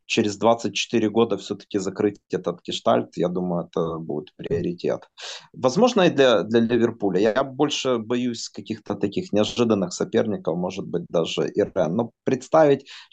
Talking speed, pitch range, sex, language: 135 wpm, 105-140 Hz, male, Russian